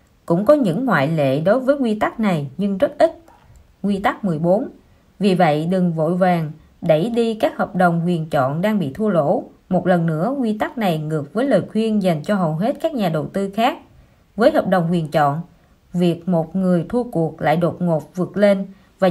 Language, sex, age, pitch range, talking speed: Vietnamese, female, 20-39, 170-230 Hz, 210 wpm